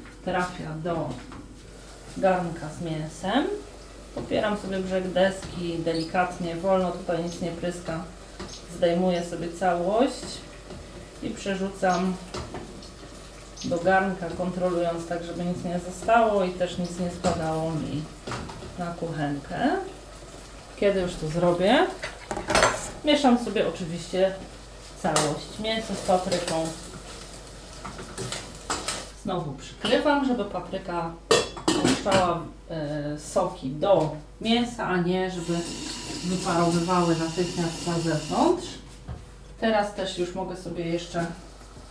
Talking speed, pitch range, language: 100 wpm, 170-205 Hz, Polish